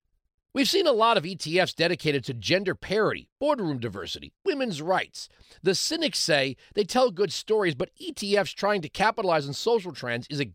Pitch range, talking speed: 145-205 Hz, 175 wpm